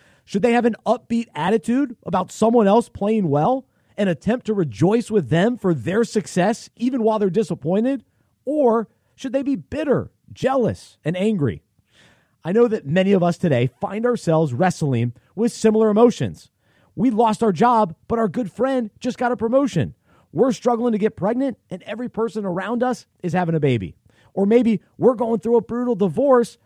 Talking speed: 180 wpm